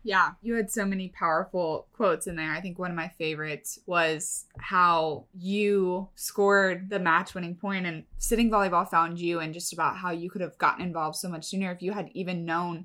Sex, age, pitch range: female, 20-39, 175-210 Hz